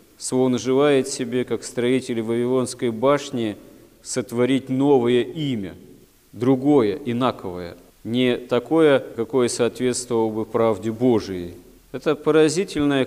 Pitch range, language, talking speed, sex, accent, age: 115-130 Hz, Russian, 95 wpm, male, native, 40-59